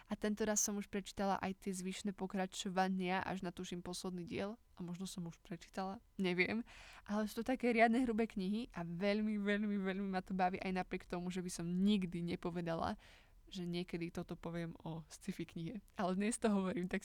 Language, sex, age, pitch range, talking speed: Slovak, female, 20-39, 180-210 Hz, 195 wpm